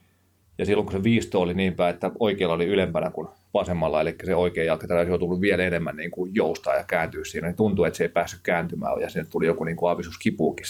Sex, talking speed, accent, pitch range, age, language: male, 230 wpm, native, 90-95 Hz, 30-49, Finnish